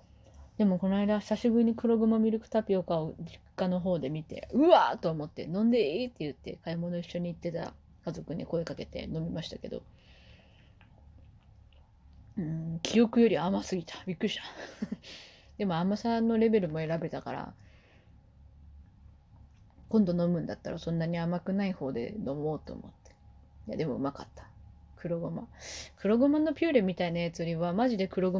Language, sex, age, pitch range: Japanese, female, 20-39, 150-200 Hz